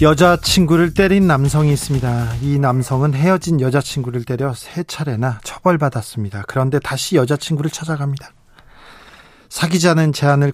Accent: native